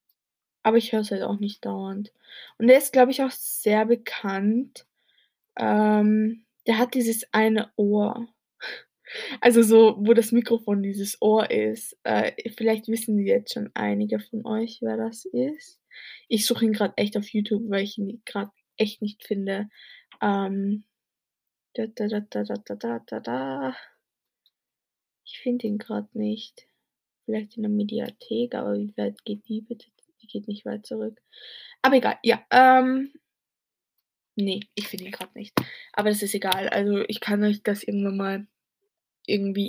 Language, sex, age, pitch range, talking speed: German, female, 20-39, 205-235 Hz, 160 wpm